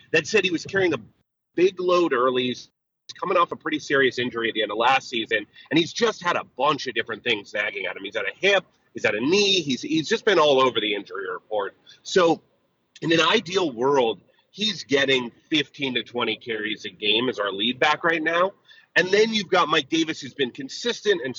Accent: American